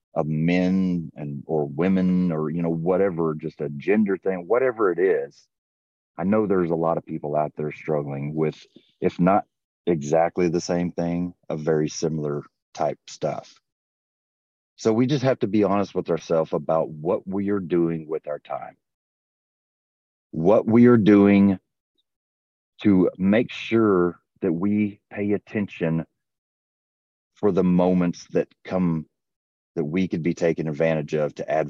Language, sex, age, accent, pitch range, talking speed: English, male, 40-59, American, 80-95 Hz, 150 wpm